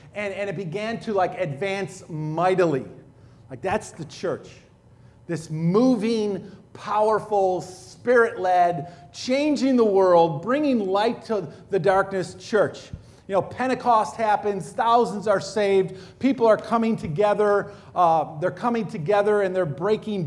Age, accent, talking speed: 40-59, American, 125 wpm